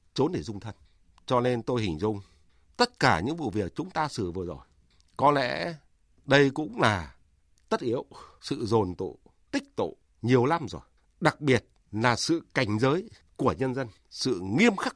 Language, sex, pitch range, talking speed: Vietnamese, male, 95-150 Hz, 180 wpm